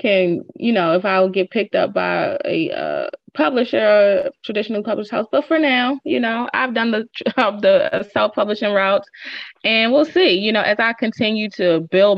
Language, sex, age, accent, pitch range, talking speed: English, female, 20-39, American, 200-280 Hz, 180 wpm